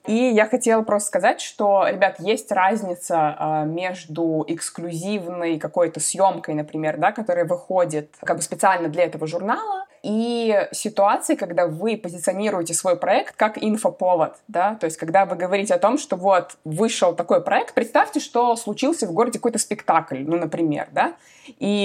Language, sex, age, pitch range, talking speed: Russian, female, 20-39, 175-220 Hz, 155 wpm